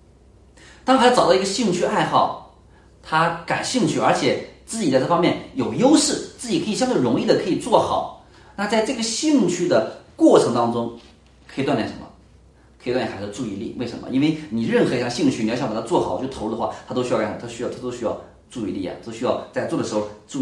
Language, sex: Chinese, male